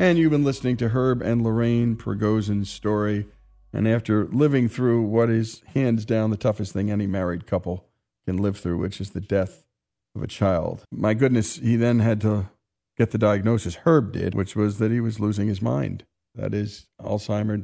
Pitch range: 105-125 Hz